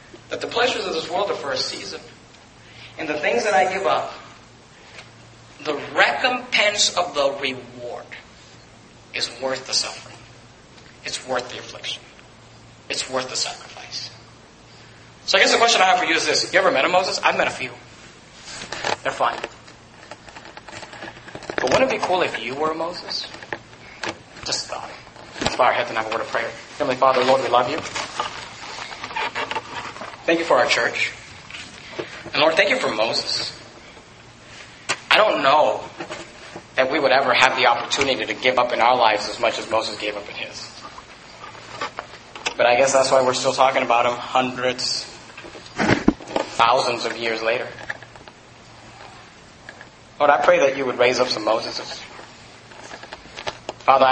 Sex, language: male, English